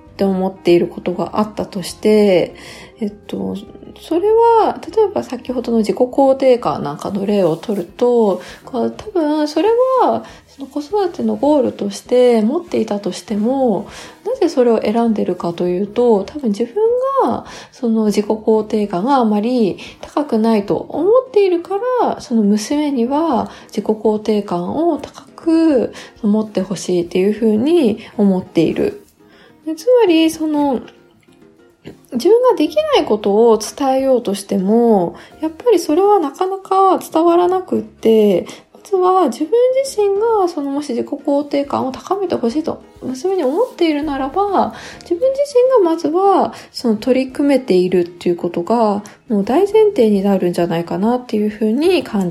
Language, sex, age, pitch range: Japanese, female, 20-39, 210-340 Hz